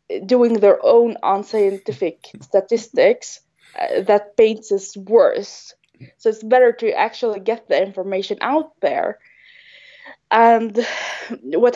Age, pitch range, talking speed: 20-39, 195-275 Hz, 110 wpm